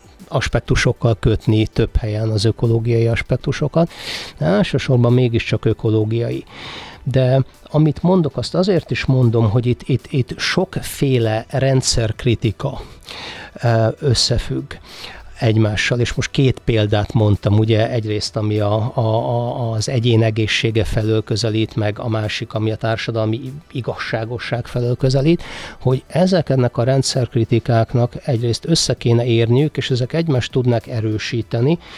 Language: Hungarian